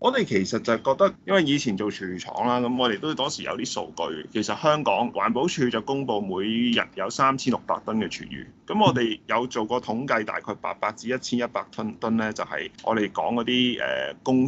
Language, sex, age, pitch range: Chinese, male, 20-39, 110-150 Hz